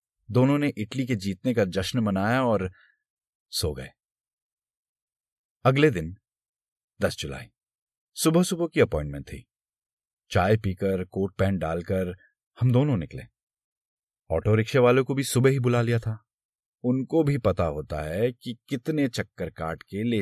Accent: native